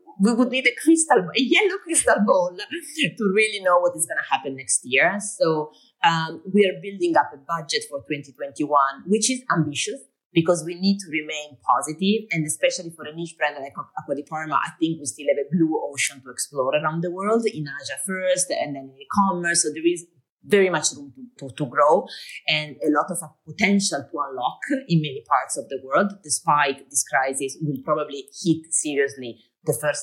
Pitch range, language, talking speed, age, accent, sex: 145-200 Hz, English, 195 wpm, 30-49, Italian, female